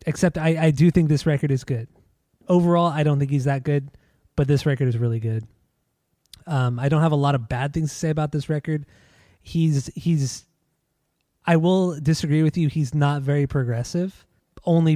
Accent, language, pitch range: American, English, 130-155 Hz